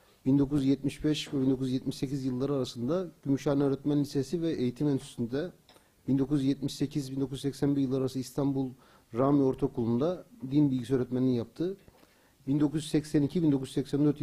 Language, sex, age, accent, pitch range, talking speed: Turkish, male, 40-59, native, 135-155 Hz, 95 wpm